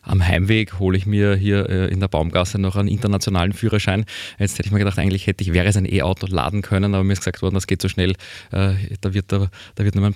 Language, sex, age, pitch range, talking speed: German, male, 20-39, 95-120 Hz, 255 wpm